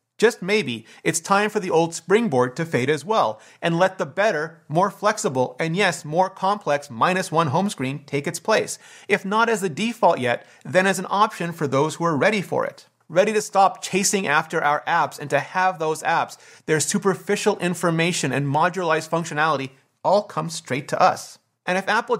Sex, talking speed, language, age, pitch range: male, 195 wpm, English, 30-49, 155-205 Hz